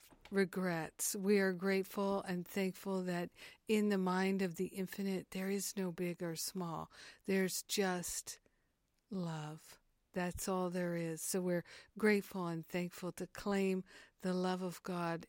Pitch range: 175-195 Hz